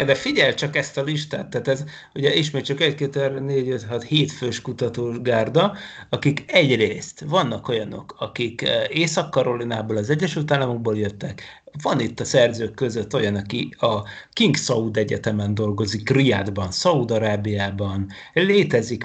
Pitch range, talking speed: 115-150 Hz, 150 wpm